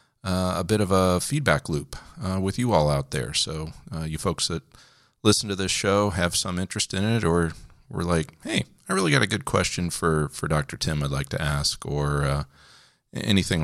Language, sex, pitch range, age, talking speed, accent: English, male, 80-115 Hz, 40-59, 210 wpm, American